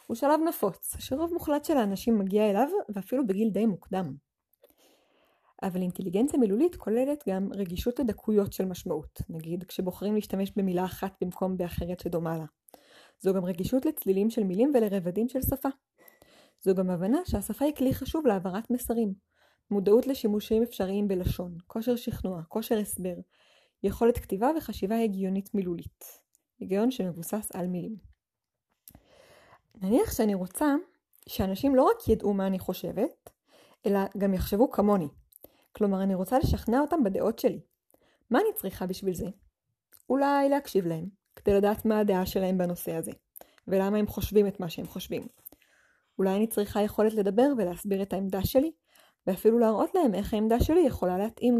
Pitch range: 190-245 Hz